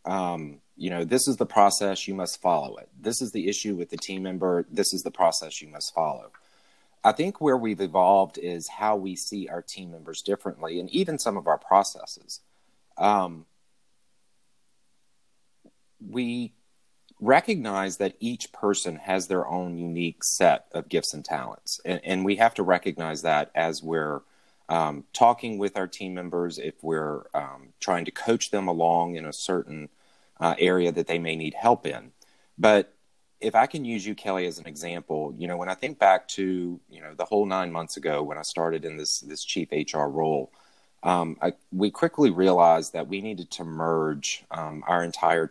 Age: 30-49